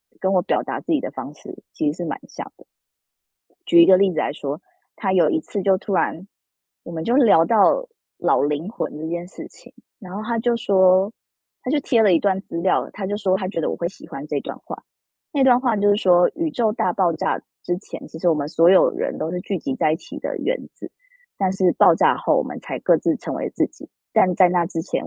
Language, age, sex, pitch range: Chinese, 20-39, female, 175-270 Hz